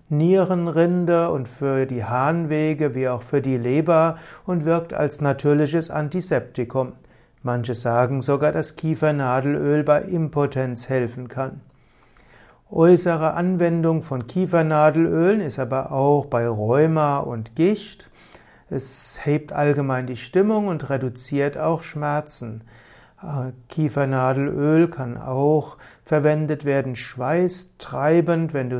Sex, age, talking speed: male, 60-79, 110 wpm